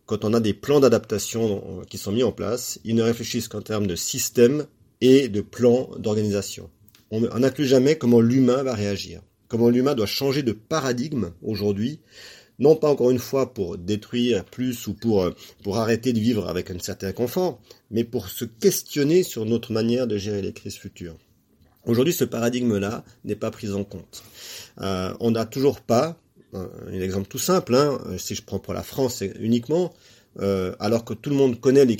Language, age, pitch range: French, 40-59, 100-125 Hz